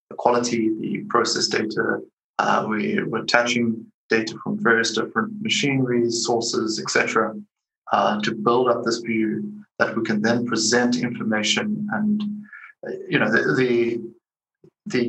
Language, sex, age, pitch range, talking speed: English, male, 30-49, 115-140 Hz, 135 wpm